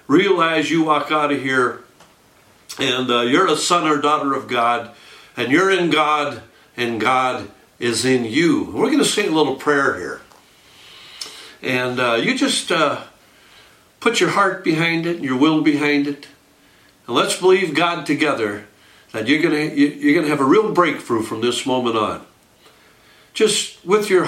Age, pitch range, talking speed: 60-79, 135-210 Hz, 175 wpm